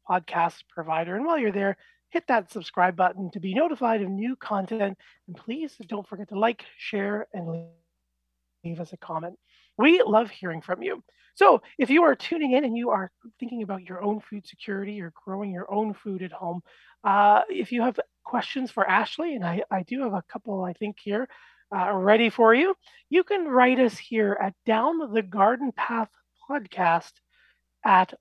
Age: 30-49